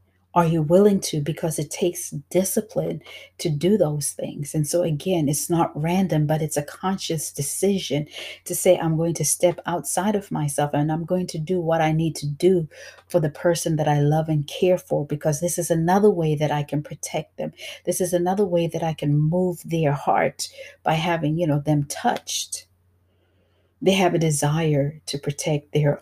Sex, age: female, 40-59